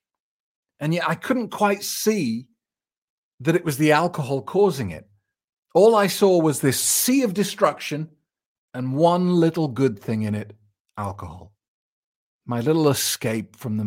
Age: 40-59